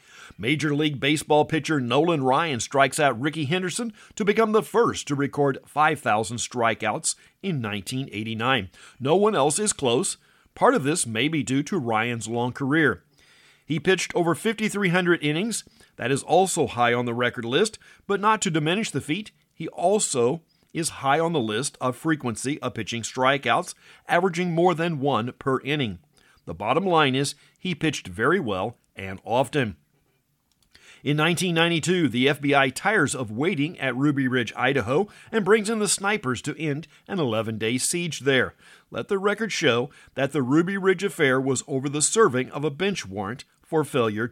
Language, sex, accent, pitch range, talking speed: English, male, American, 125-170 Hz, 165 wpm